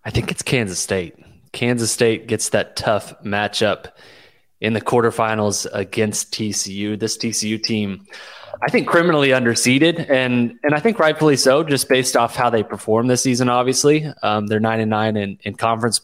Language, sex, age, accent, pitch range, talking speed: English, male, 20-39, American, 110-125 Hz, 170 wpm